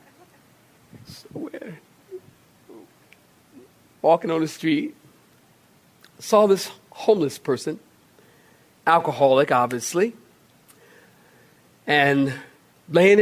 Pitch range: 160-230 Hz